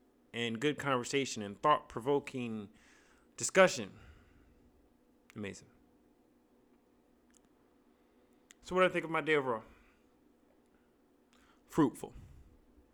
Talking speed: 85 wpm